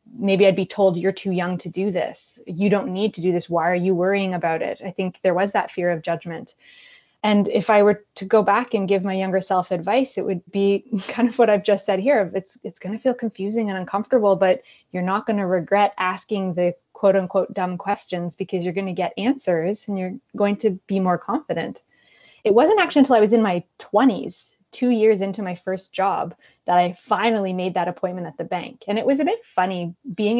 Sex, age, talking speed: female, 20-39, 225 wpm